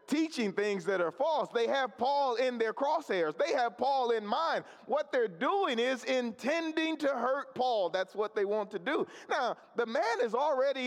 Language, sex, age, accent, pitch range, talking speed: English, male, 40-59, American, 170-255 Hz, 195 wpm